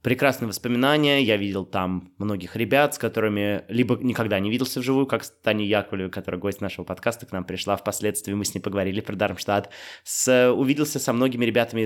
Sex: male